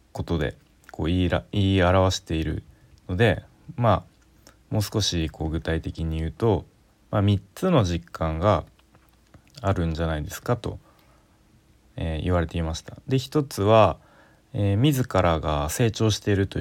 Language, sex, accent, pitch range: Japanese, male, native, 85-115 Hz